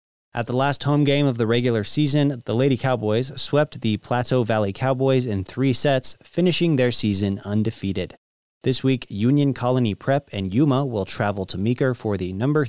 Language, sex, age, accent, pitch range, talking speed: English, male, 30-49, American, 105-135 Hz, 180 wpm